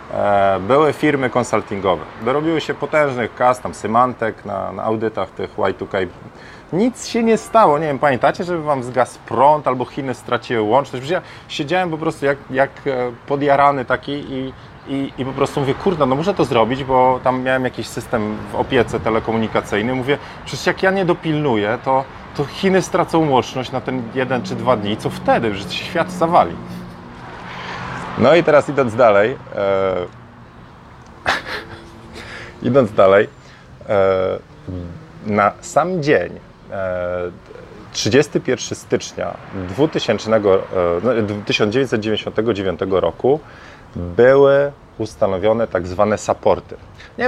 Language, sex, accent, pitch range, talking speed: Polish, male, native, 110-145 Hz, 135 wpm